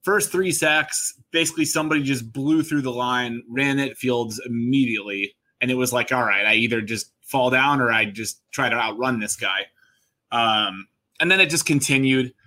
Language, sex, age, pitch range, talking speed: English, male, 20-39, 115-135 Hz, 190 wpm